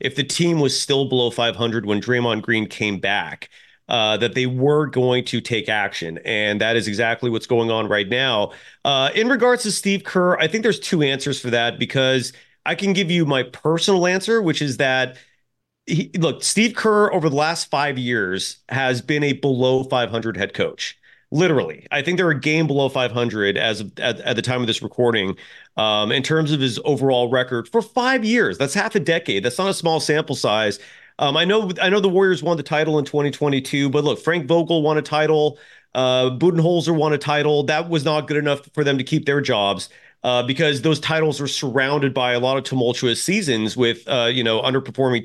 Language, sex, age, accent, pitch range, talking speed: English, male, 30-49, American, 125-160 Hz, 205 wpm